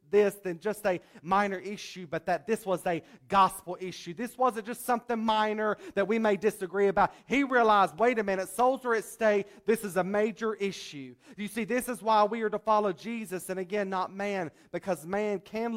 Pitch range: 175-245 Hz